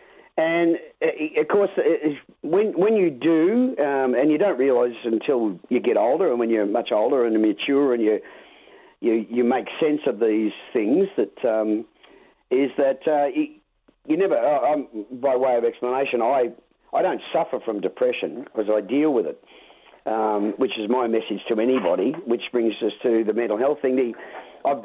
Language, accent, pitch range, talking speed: English, Australian, 110-150 Hz, 175 wpm